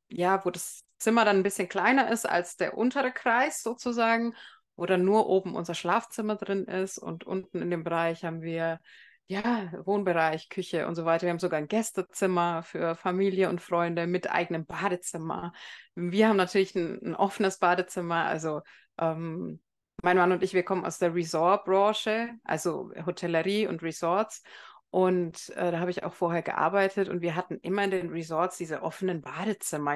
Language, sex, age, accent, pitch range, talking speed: German, female, 30-49, German, 170-215 Hz, 175 wpm